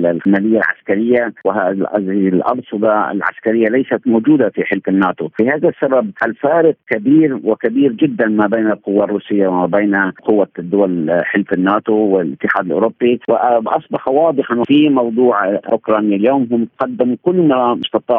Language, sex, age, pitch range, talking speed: Arabic, male, 50-69, 100-120 Hz, 130 wpm